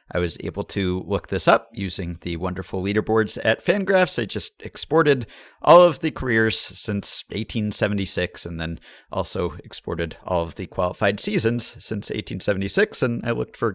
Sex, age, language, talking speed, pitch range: male, 50-69, English, 160 wpm, 90-115 Hz